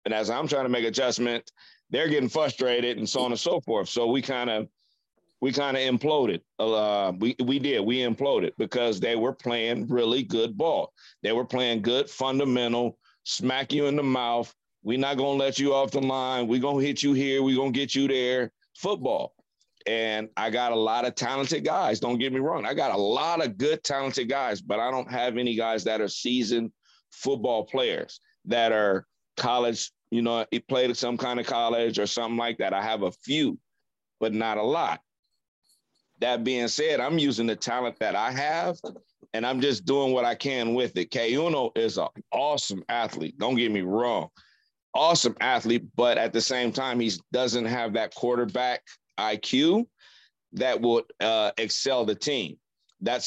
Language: English